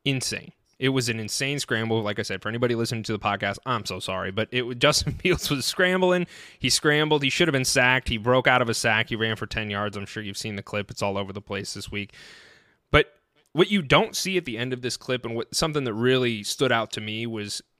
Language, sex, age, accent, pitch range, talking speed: English, male, 20-39, American, 110-135 Hz, 260 wpm